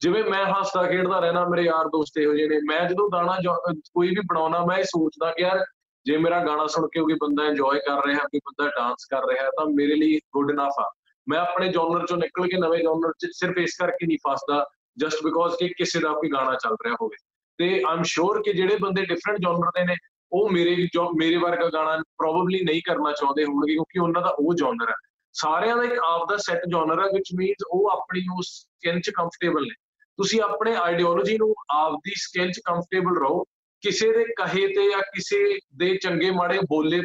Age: 20-39